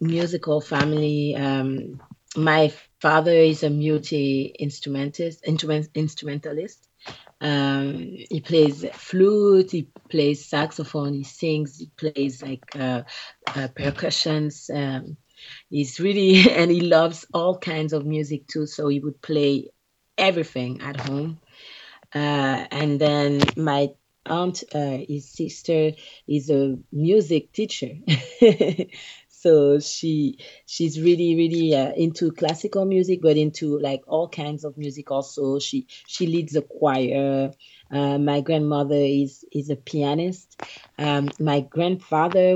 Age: 30-49